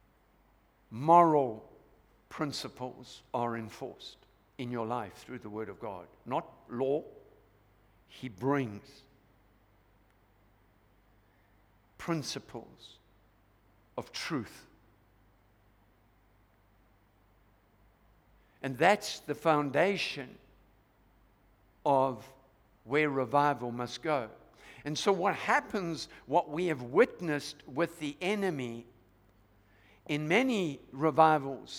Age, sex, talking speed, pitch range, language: 60-79, male, 80 wpm, 100-150 Hz, English